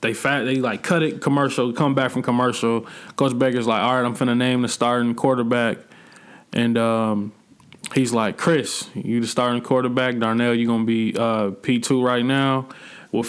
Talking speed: 180 wpm